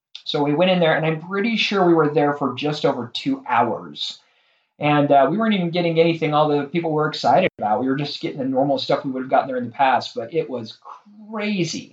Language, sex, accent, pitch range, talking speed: English, male, American, 135-170 Hz, 245 wpm